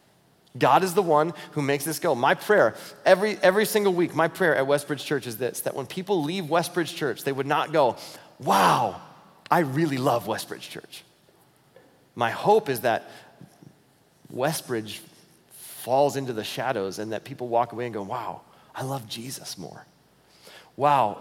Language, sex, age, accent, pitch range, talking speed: English, male, 30-49, American, 125-160 Hz, 165 wpm